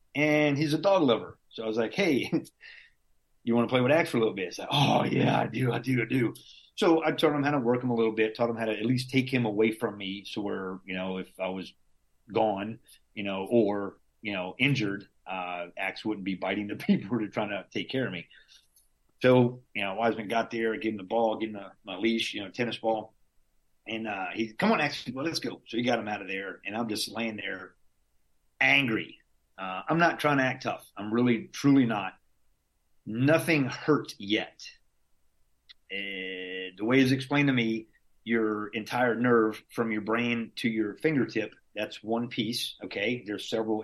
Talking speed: 215 wpm